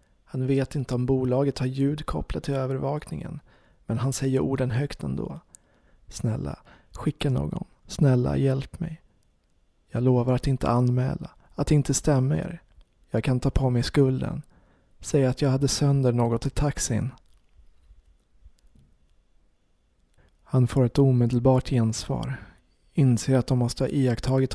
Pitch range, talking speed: 120-140 Hz, 135 wpm